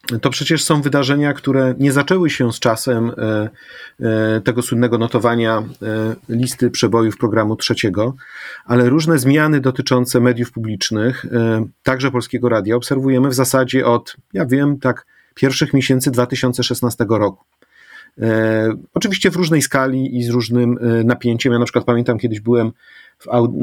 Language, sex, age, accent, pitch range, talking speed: Polish, male, 40-59, native, 120-135 Hz, 130 wpm